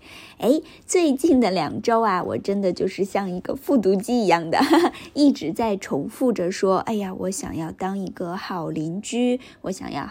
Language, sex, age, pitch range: Chinese, female, 20-39, 190-270 Hz